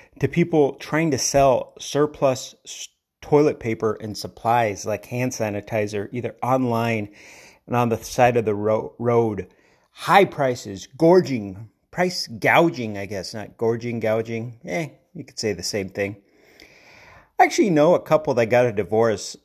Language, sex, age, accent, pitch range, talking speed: English, male, 30-49, American, 110-150 Hz, 150 wpm